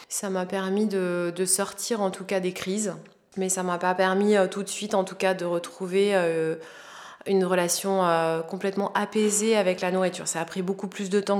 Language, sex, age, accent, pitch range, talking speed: French, female, 20-39, French, 185-220 Hz, 210 wpm